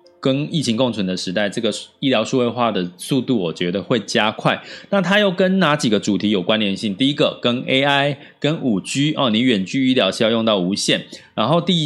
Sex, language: male, Chinese